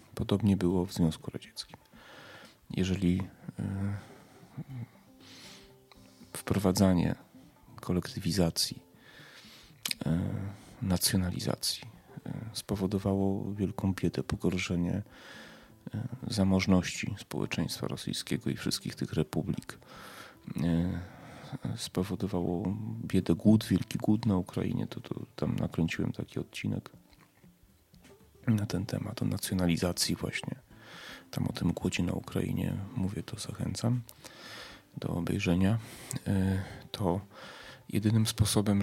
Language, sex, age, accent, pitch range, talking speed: Polish, male, 30-49, native, 90-105 Hz, 80 wpm